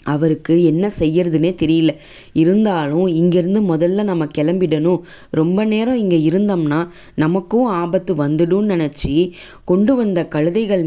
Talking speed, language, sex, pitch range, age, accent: 115 wpm, English, female, 165-195 Hz, 20-39, Indian